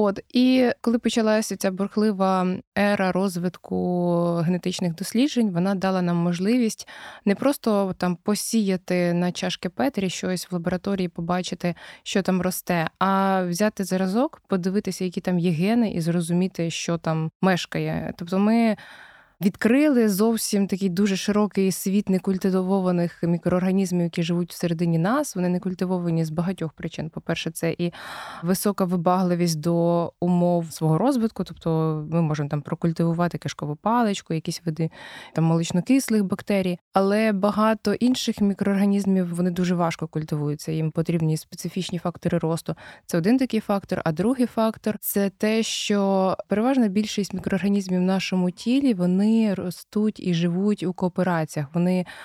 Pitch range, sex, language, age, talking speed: 175-210 Hz, female, Ukrainian, 20-39, 135 wpm